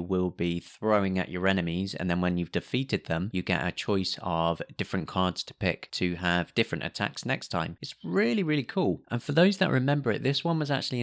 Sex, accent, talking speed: male, British, 225 wpm